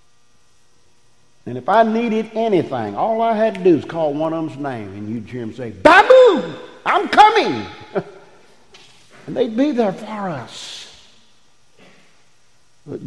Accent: American